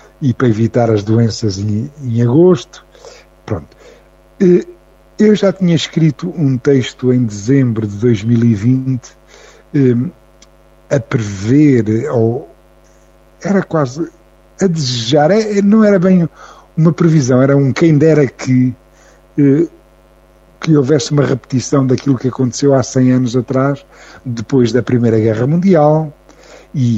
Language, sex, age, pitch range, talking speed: Portuguese, male, 50-69, 110-140 Hz, 120 wpm